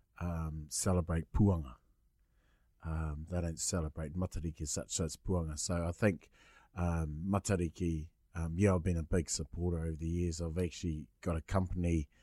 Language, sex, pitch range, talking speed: English, male, 80-100 Hz, 155 wpm